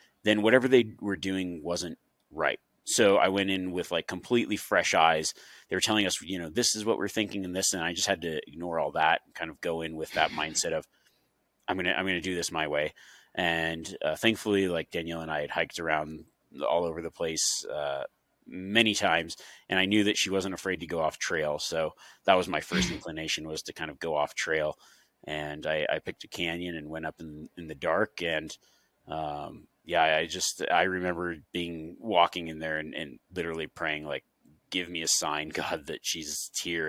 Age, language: 30-49, English